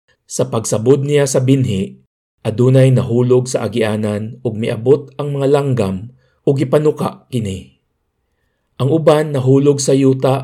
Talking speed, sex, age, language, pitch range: 125 wpm, male, 50-69, Filipino, 110-135 Hz